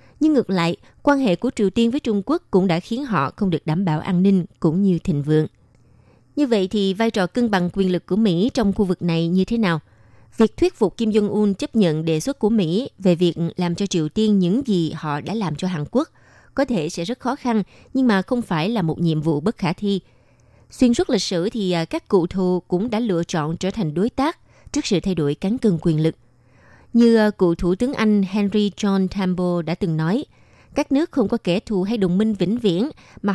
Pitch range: 165-220 Hz